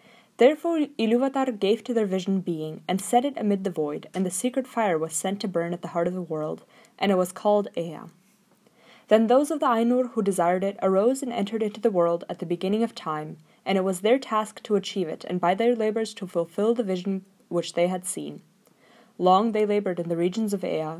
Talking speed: 225 wpm